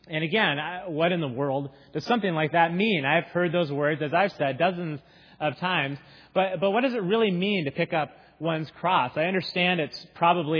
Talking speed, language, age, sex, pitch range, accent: 210 wpm, English, 30-49, male, 145-185 Hz, American